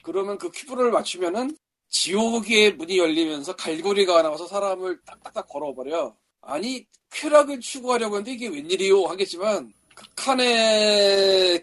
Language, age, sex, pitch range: Korean, 40-59, male, 185-265 Hz